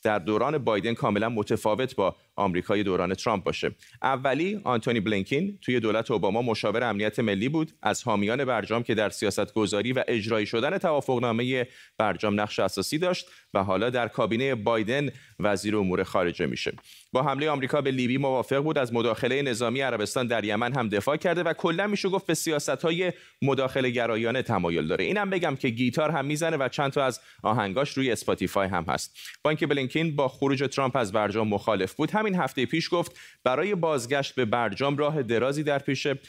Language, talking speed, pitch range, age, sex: Persian, 170 wpm, 110-145 Hz, 30-49, male